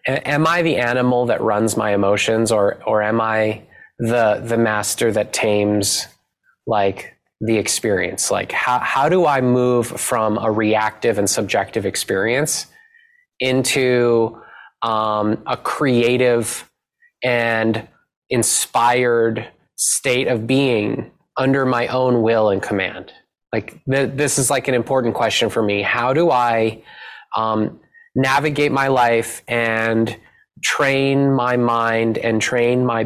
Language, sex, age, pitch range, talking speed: English, male, 20-39, 115-135 Hz, 130 wpm